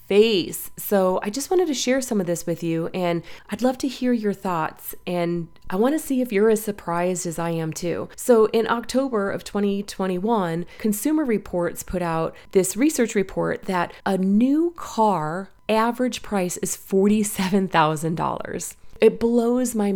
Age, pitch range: 30-49, 175-235 Hz